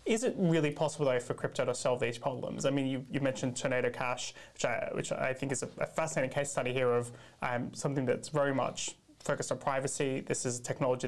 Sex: male